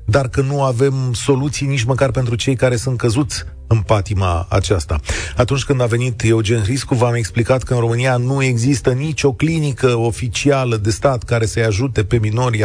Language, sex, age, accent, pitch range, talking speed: Romanian, male, 40-59, native, 105-135 Hz, 180 wpm